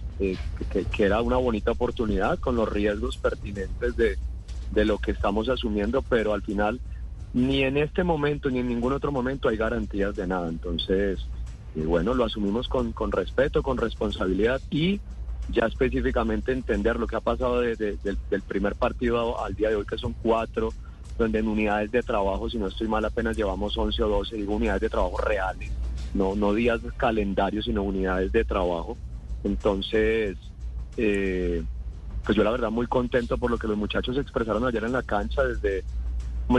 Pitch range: 95-120 Hz